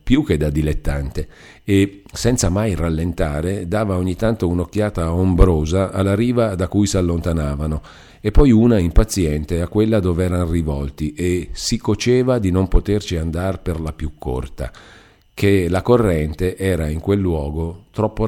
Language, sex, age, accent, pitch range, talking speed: Italian, male, 50-69, native, 80-105 Hz, 155 wpm